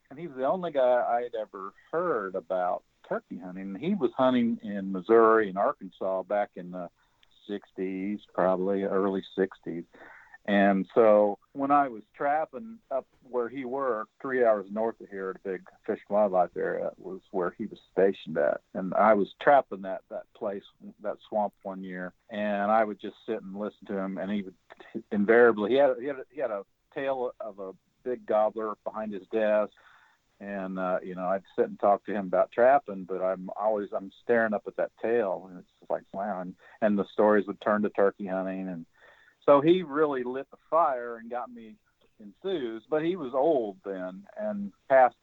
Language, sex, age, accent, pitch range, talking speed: English, male, 50-69, American, 95-120 Hz, 195 wpm